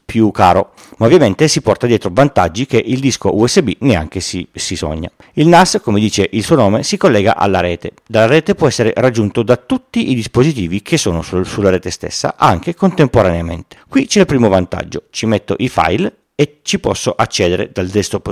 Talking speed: 190 wpm